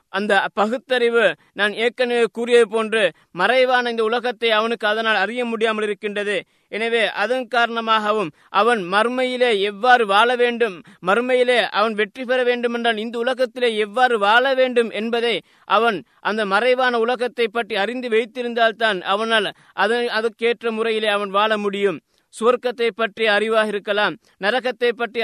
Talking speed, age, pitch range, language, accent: 125 wpm, 20-39, 210-240 Hz, Tamil, native